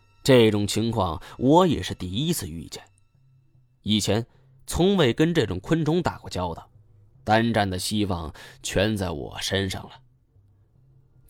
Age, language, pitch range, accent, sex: 20-39, Chinese, 95-135 Hz, native, male